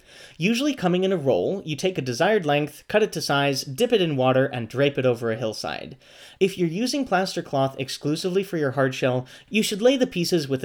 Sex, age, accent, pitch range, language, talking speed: male, 30-49, American, 135-185 Hz, English, 230 wpm